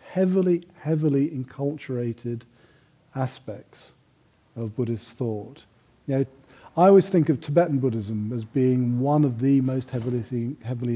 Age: 40-59